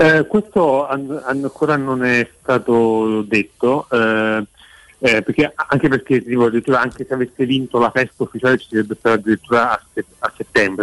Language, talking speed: Italian, 160 wpm